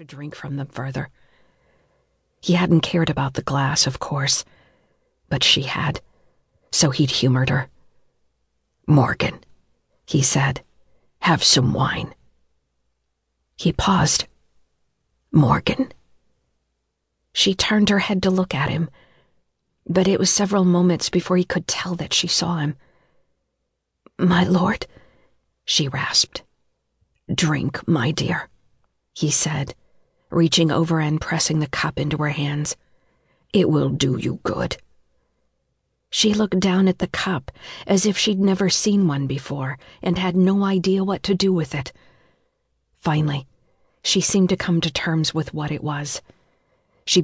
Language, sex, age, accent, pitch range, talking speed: English, female, 50-69, American, 140-180 Hz, 135 wpm